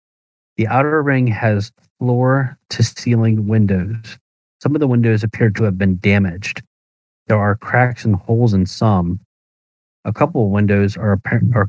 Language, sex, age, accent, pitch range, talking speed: English, male, 30-49, American, 95-115 Hz, 145 wpm